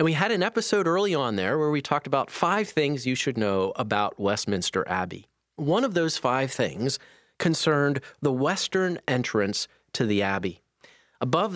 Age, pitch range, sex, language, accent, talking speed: 30-49, 115-160 Hz, male, English, American, 170 wpm